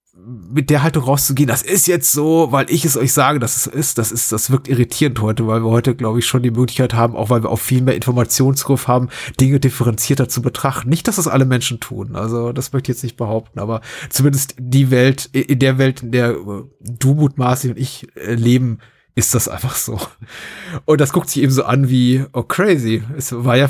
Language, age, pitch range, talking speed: German, 30-49, 115-135 Hz, 220 wpm